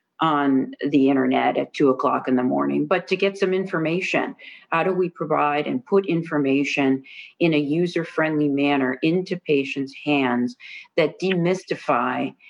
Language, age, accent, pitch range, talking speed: English, 40-59, American, 145-170 Hz, 145 wpm